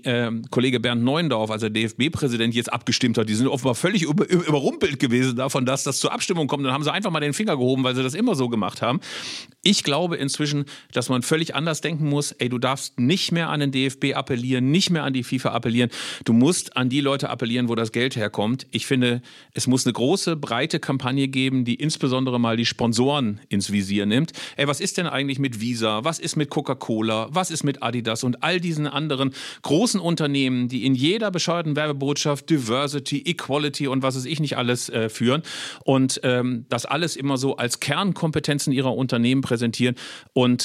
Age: 50-69